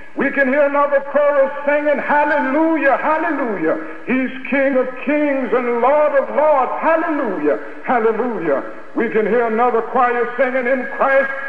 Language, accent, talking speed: English, American, 135 wpm